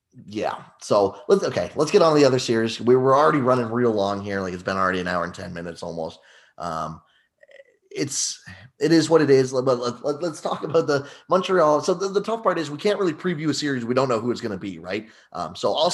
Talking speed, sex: 250 wpm, male